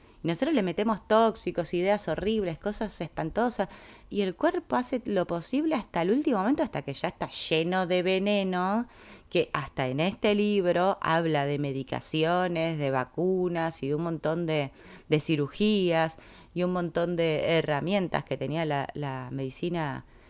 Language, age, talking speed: Spanish, 20-39, 155 wpm